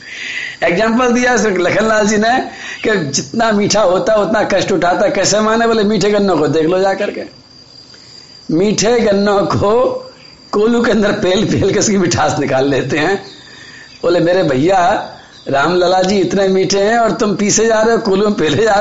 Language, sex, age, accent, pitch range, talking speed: Hindi, male, 50-69, native, 125-205 Hz, 175 wpm